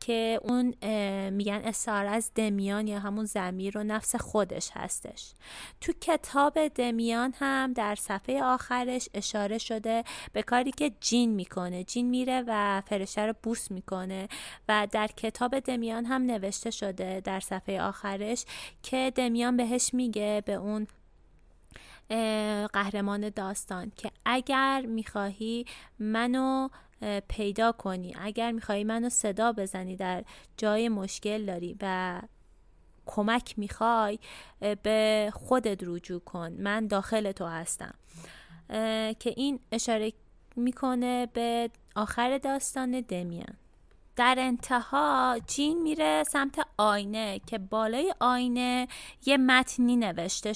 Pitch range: 205-245 Hz